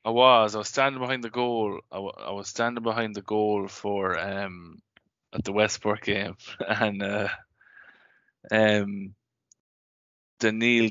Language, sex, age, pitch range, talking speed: English, male, 20-39, 100-115 Hz, 150 wpm